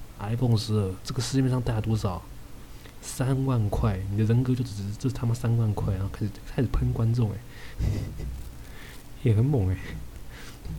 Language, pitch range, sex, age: Chinese, 100-120 Hz, male, 20-39